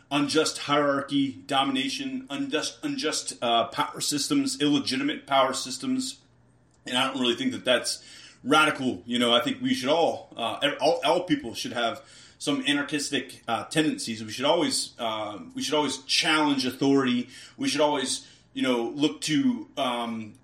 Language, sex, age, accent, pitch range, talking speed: English, male, 30-49, American, 125-160 Hz, 155 wpm